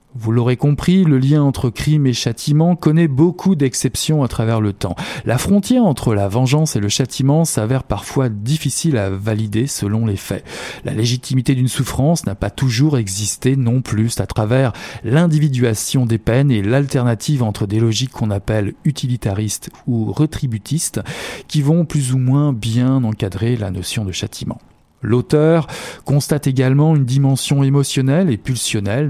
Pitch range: 110-145 Hz